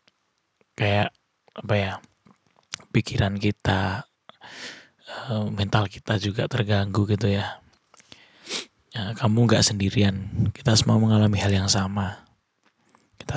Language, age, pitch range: Indonesian, 20-39, 100-115 Hz